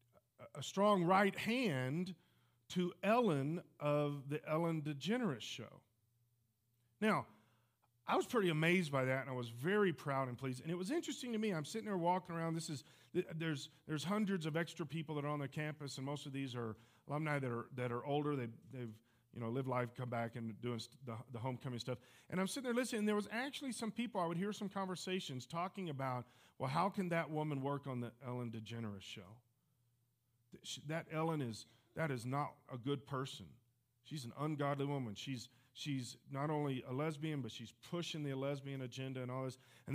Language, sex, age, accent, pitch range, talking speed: English, male, 40-59, American, 125-175 Hz, 200 wpm